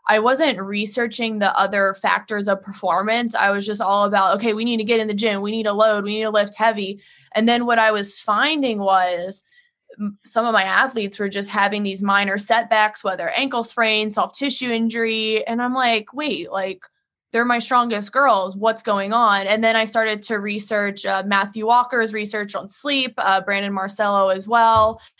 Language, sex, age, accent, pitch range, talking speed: English, female, 20-39, American, 200-230 Hz, 195 wpm